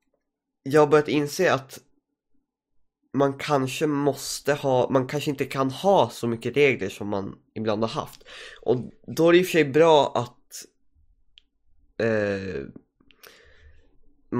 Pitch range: 110-150 Hz